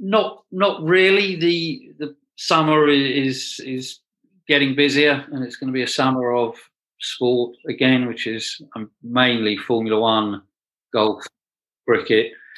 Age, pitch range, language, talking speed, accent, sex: 40-59, 95-140 Hz, English, 130 wpm, British, male